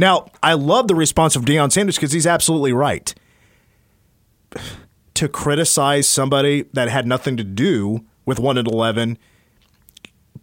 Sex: male